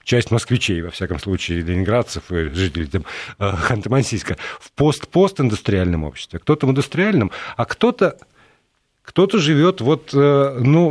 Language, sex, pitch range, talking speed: Russian, male, 105-140 Hz, 120 wpm